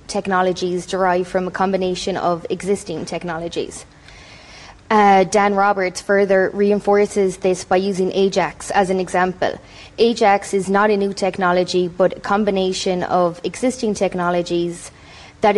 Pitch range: 180-205 Hz